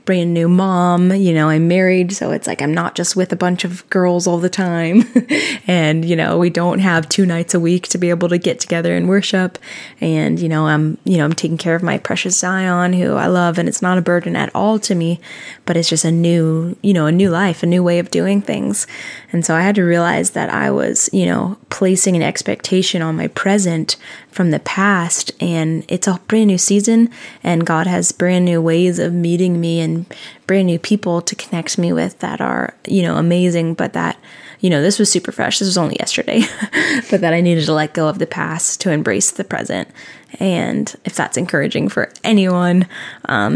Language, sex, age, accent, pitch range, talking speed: English, female, 20-39, American, 170-195 Hz, 220 wpm